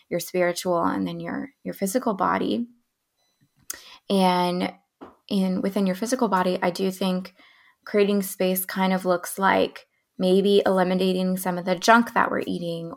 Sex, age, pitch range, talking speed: female, 20-39, 180-200 Hz, 150 wpm